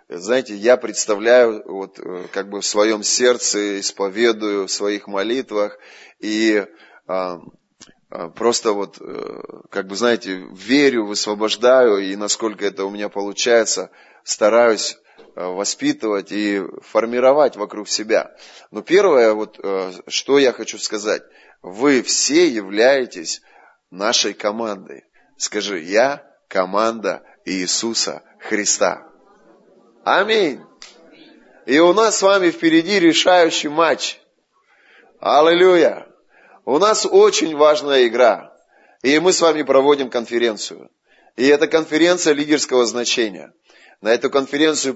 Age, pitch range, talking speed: 20-39, 105-155 Hz, 105 wpm